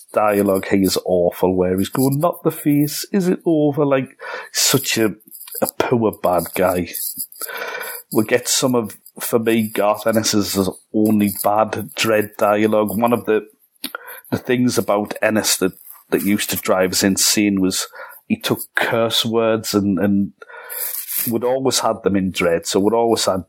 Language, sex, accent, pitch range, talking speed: English, male, British, 100-120 Hz, 165 wpm